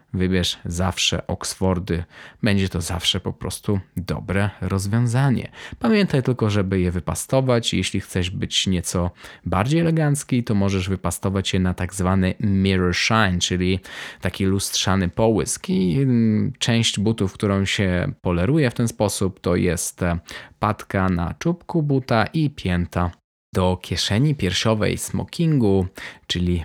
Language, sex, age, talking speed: Polish, male, 20-39, 125 wpm